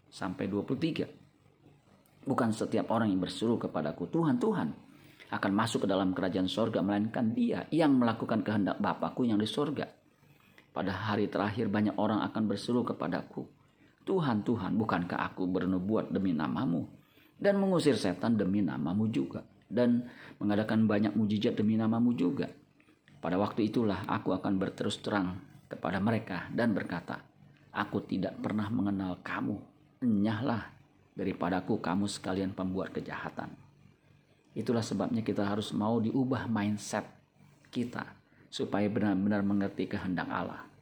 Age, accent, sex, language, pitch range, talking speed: 40-59, native, male, Indonesian, 95-115 Hz, 130 wpm